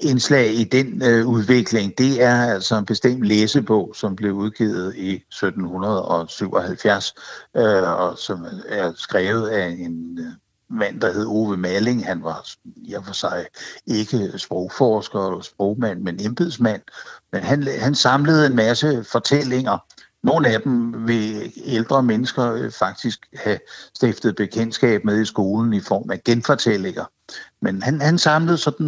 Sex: male